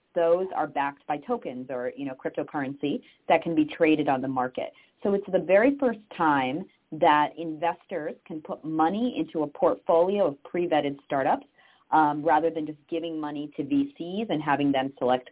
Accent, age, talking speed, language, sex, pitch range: American, 30-49, 175 wpm, English, female, 145-170 Hz